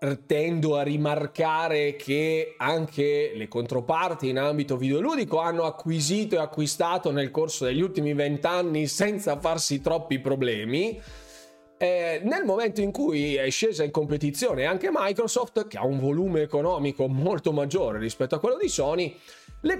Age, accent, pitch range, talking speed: 20-39, native, 135-180 Hz, 140 wpm